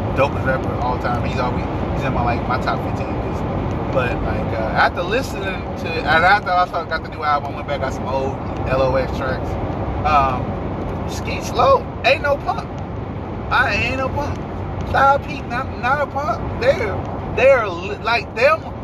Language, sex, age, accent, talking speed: English, male, 30-49, American, 175 wpm